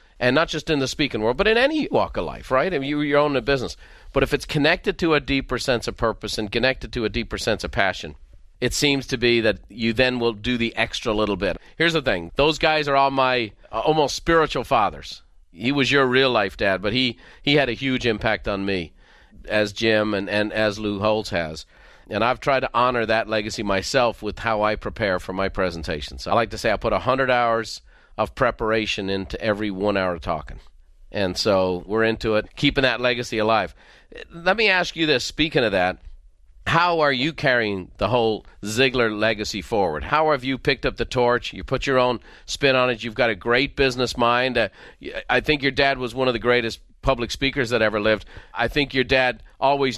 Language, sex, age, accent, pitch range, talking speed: English, male, 40-59, American, 105-135 Hz, 220 wpm